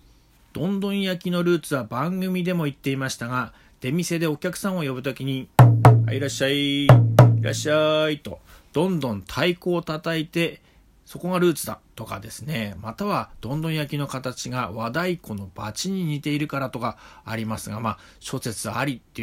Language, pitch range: Japanese, 115-155 Hz